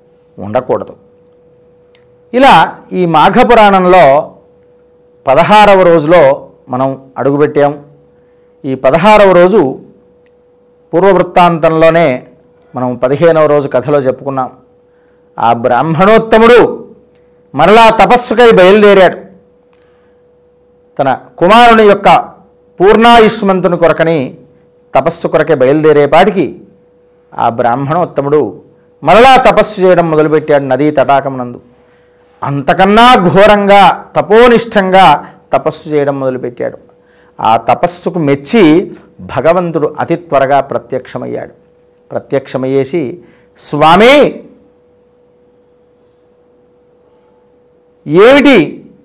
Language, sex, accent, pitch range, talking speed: Telugu, male, native, 145-220 Hz, 65 wpm